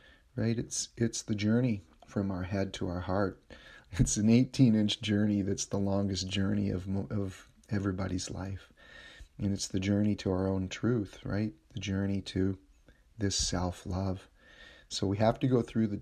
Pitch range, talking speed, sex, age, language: 95-105 Hz, 170 wpm, male, 40-59, English